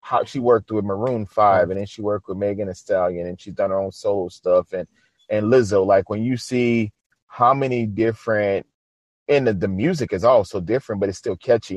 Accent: American